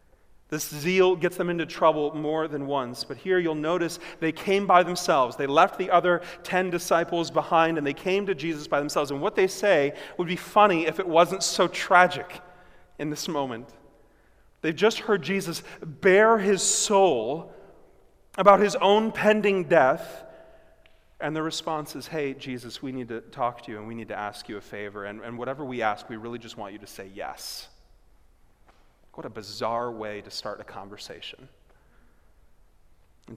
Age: 30-49